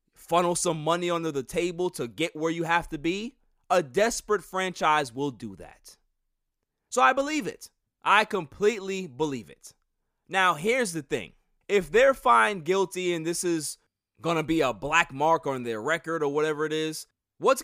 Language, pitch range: English, 150-215 Hz